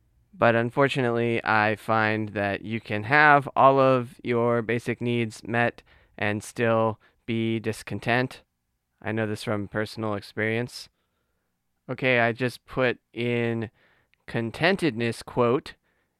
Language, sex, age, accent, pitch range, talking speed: English, male, 20-39, American, 105-130 Hz, 115 wpm